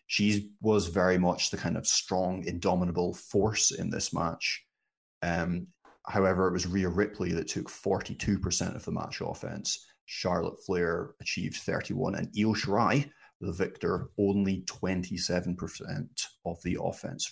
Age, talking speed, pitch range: 30-49, 140 wpm, 90-100 Hz